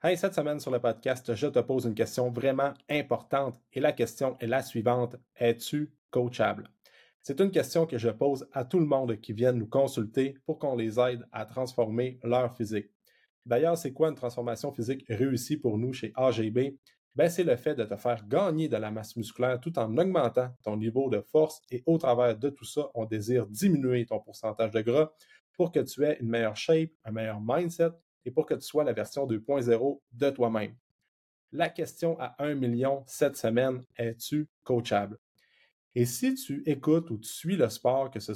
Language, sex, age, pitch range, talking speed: French, male, 30-49, 115-150 Hz, 195 wpm